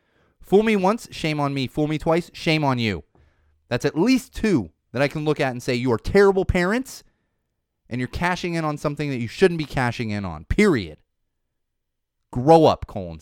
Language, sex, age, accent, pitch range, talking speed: English, male, 30-49, American, 100-165 Hz, 200 wpm